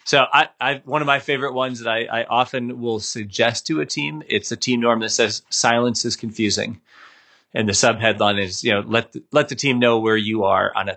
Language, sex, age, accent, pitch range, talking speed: English, male, 30-49, American, 110-125 Hz, 240 wpm